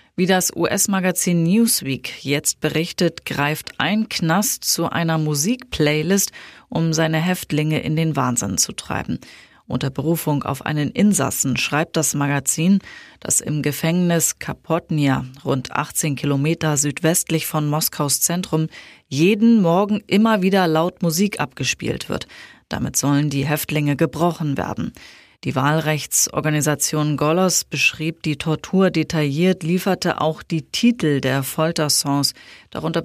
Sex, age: female, 30-49